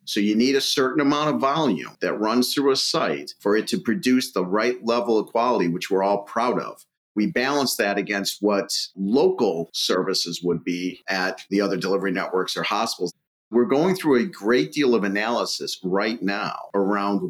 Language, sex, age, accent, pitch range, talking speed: English, male, 40-59, American, 100-125 Hz, 185 wpm